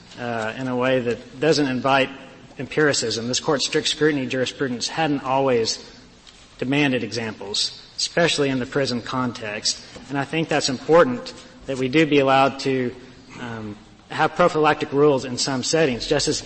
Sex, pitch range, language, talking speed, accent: male, 125-145 Hz, English, 150 wpm, American